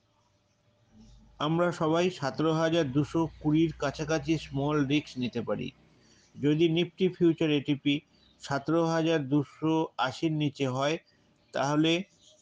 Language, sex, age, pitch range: English, male, 50-69, 145-165 Hz